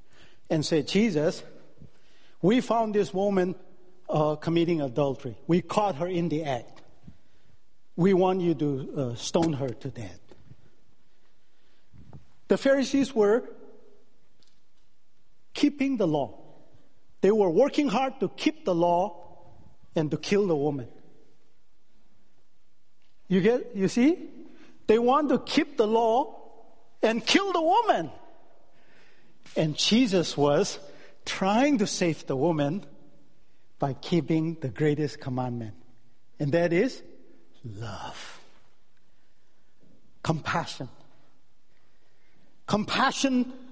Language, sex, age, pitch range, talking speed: English, male, 50-69, 160-265 Hz, 105 wpm